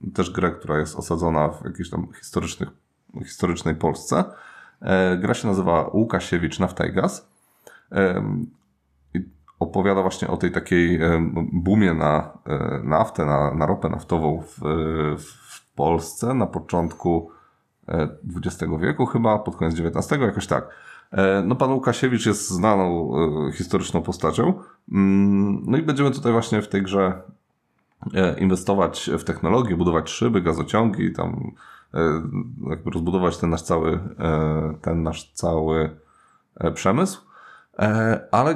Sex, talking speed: male, 115 wpm